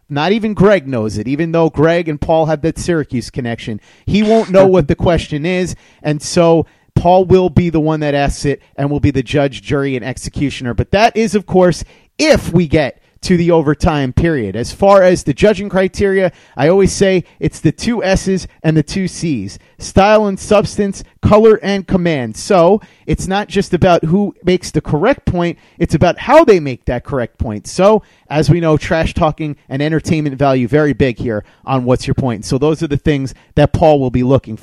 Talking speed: 205 wpm